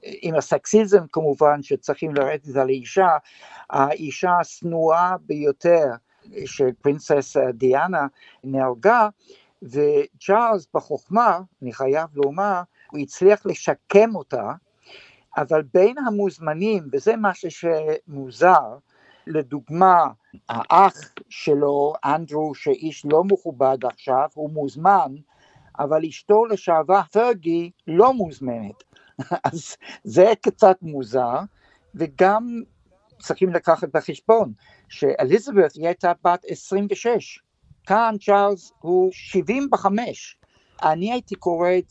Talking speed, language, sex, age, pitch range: 95 wpm, Hebrew, male, 60-79, 145-200 Hz